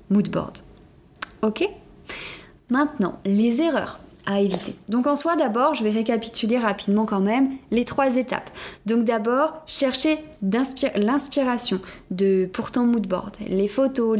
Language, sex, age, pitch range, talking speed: French, female, 20-39, 195-240 Hz, 125 wpm